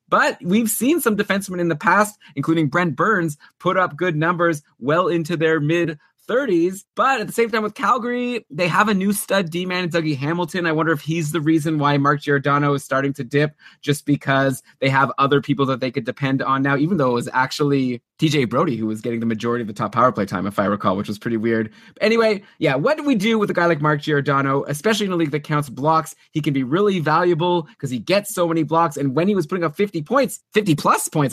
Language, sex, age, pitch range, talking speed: English, male, 20-39, 135-180 Hz, 240 wpm